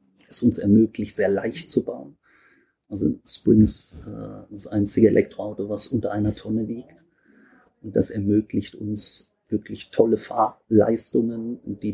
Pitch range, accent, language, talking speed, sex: 105-115 Hz, German, German, 130 wpm, male